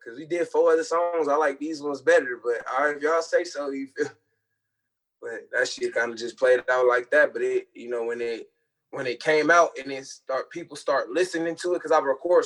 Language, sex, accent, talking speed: English, male, American, 240 wpm